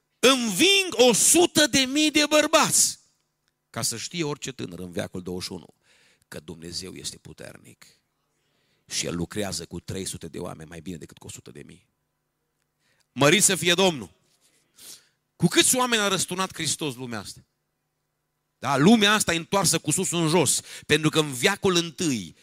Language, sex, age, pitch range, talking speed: Romanian, male, 50-69, 100-155 Hz, 155 wpm